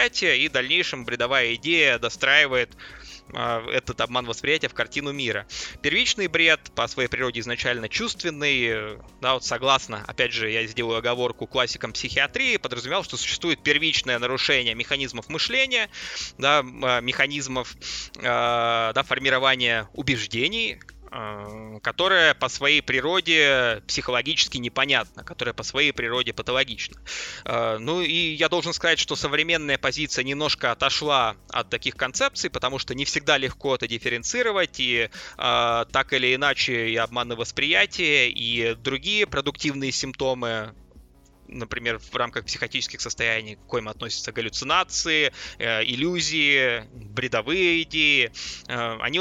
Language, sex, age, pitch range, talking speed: Russian, male, 20-39, 115-150 Hz, 120 wpm